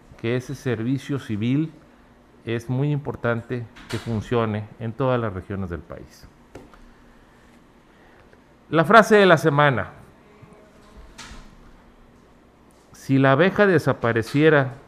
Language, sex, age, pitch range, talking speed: Spanish, male, 50-69, 115-150 Hz, 95 wpm